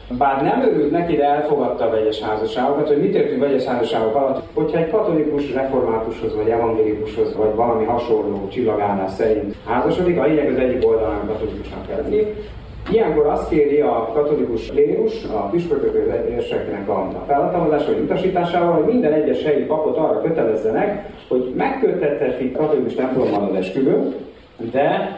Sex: male